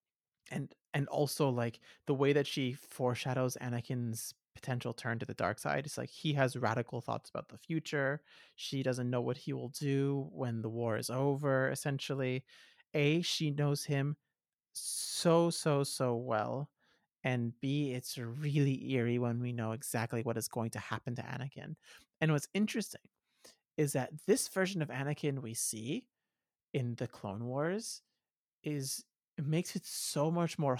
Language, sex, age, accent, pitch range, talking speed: English, male, 30-49, American, 125-165 Hz, 160 wpm